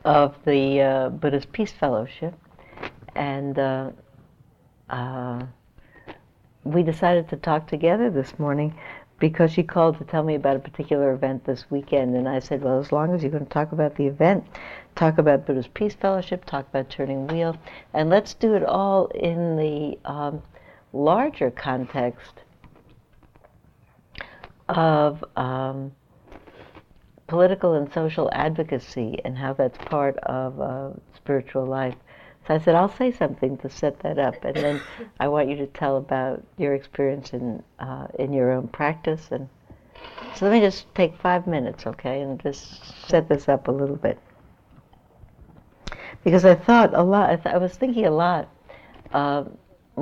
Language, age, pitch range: English, 60-79, 135-170 Hz